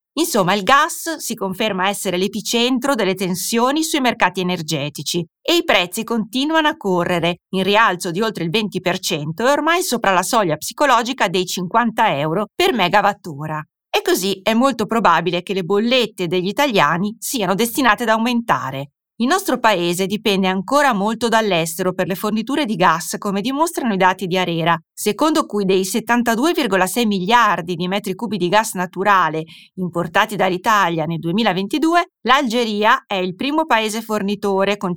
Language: Italian